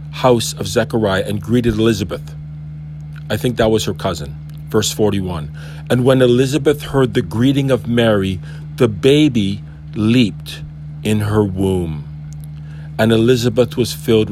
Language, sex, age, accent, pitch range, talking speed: English, male, 50-69, American, 75-125 Hz, 135 wpm